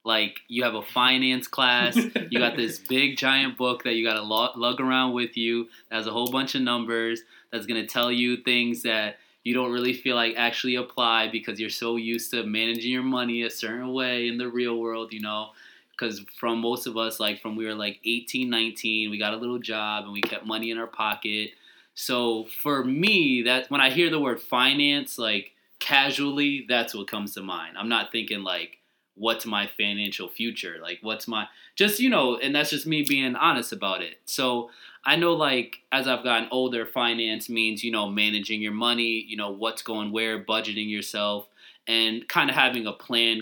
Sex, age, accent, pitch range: male, 20-39, American, 110-125 Hz